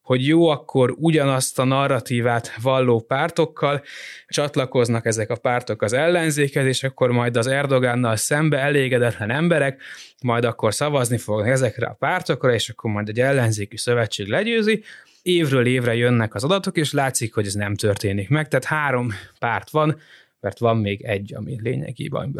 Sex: male